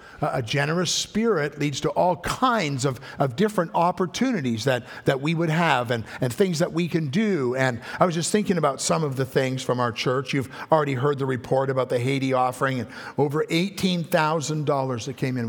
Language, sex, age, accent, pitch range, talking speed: English, male, 50-69, American, 135-180 Hz, 205 wpm